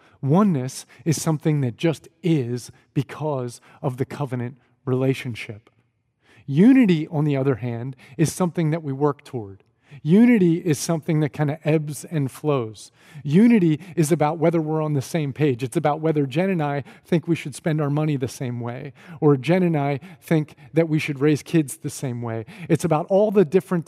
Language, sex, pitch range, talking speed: English, male, 130-165 Hz, 185 wpm